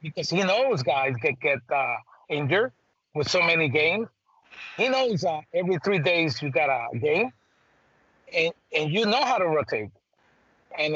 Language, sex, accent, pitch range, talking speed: English, male, American, 150-195 Hz, 170 wpm